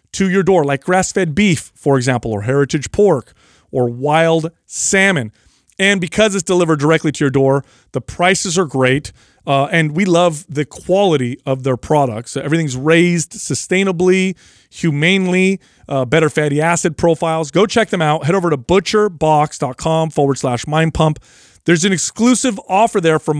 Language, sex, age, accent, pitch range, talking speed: English, male, 30-49, American, 140-185 Hz, 160 wpm